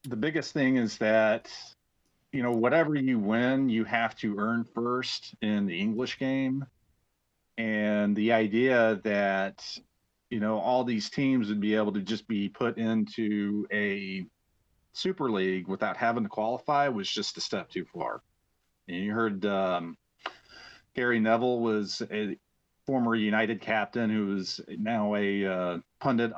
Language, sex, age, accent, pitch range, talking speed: English, male, 40-59, American, 105-120 Hz, 150 wpm